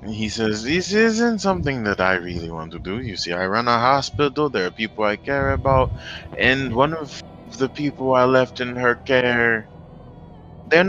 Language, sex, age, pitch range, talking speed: English, male, 20-39, 95-125 Hz, 195 wpm